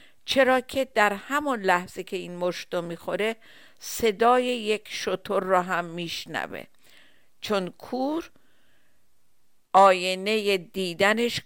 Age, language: 50-69, Persian